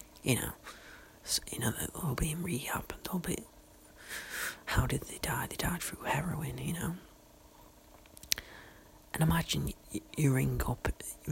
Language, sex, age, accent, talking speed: English, male, 40-59, British, 155 wpm